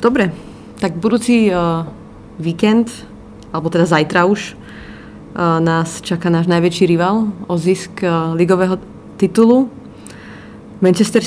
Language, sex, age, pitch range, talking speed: Slovak, female, 30-49, 165-190 Hz, 110 wpm